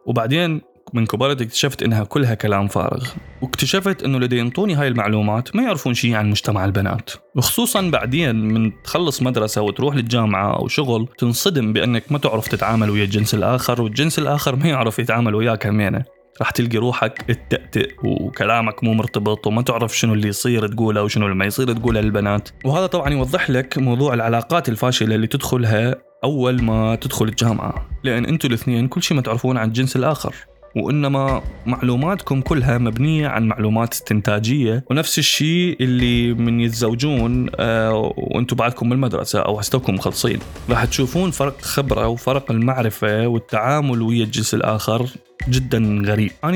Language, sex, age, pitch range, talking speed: Arabic, male, 20-39, 110-135 Hz, 150 wpm